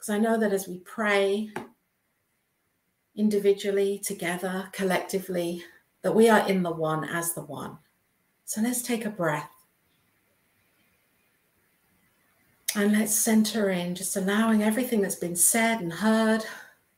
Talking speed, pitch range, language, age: 125 wpm, 175-210 Hz, English, 50-69